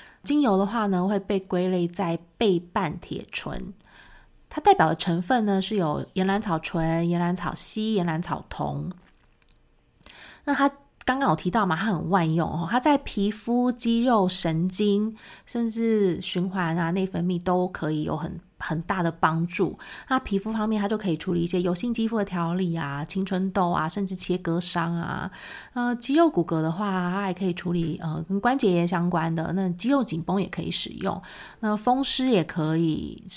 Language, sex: Chinese, female